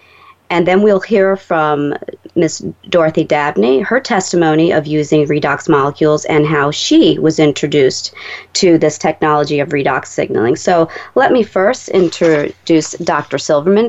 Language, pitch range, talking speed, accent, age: English, 150-190 Hz, 140 wpm, American, 40-59